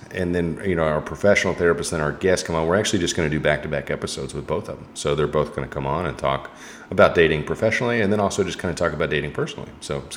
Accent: American